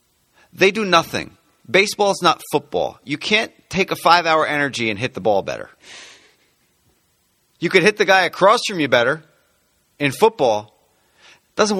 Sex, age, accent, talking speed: male, 30-49, American, 155 wpm